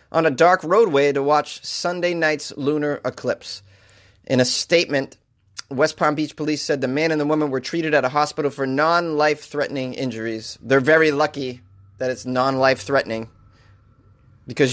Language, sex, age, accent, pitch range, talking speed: English, male, 30-49, American, 130-175 Hz, 155 wpm